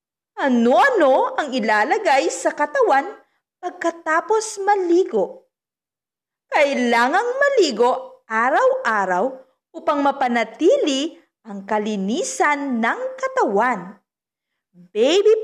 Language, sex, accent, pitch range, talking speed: Filipino, female, native, 220-370 Hz, 65 wpm